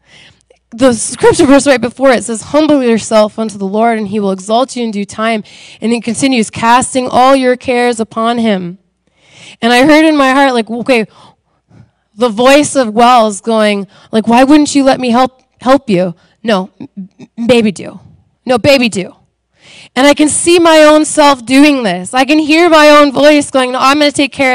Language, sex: English, female